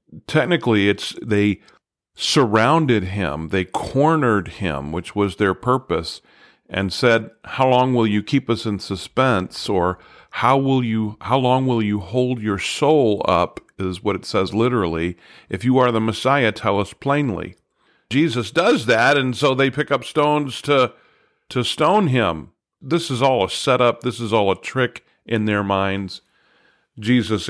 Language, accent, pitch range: English, American, 100-125 Hz